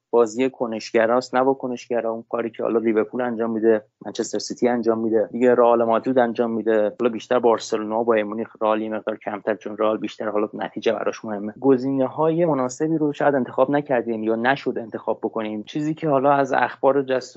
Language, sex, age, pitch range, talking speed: Persian, male, 30-49, 115-140 Hz, 180 wpm